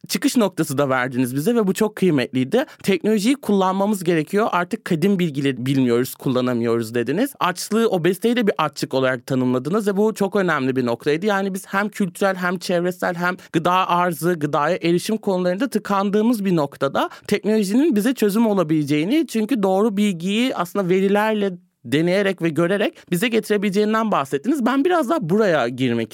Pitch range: 150-210 Hz